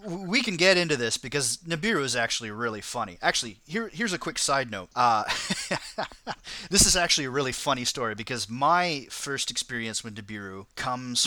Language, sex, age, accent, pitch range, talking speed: English, male, 30-49, American, 115-140 Hz, 175 wpm